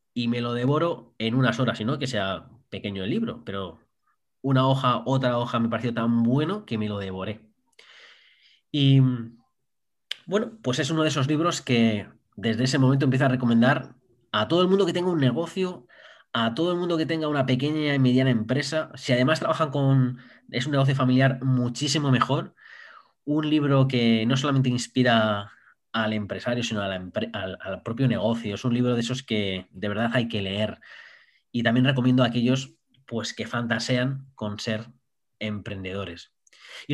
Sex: male